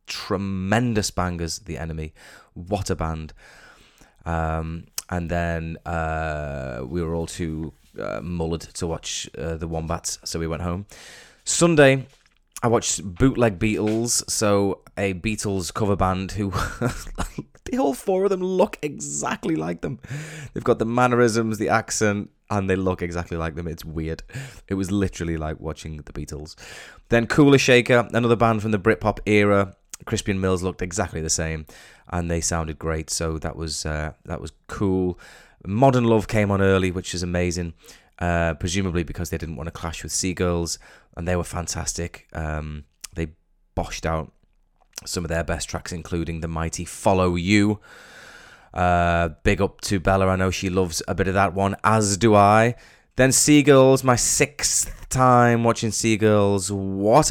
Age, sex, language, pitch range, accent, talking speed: 20-39, male, English, 80-105 Hz, British, 160 wpm